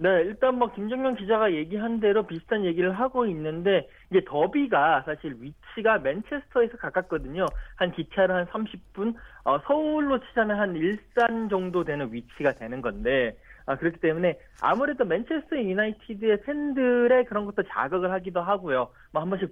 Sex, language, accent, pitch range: male, Korean, native, 150-215 Hz